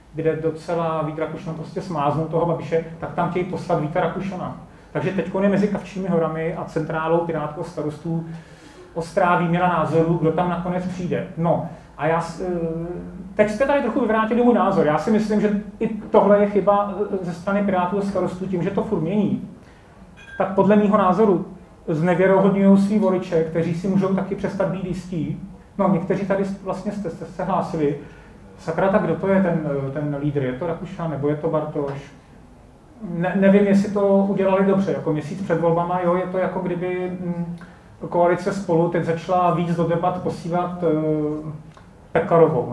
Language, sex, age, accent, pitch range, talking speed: Czech, male, 30-49, native, 160-190 Hz, 165 wpm